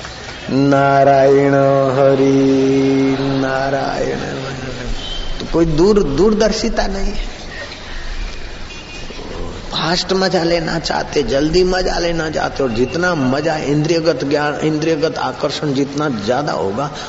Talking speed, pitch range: 80 wpm, 110-160 Hz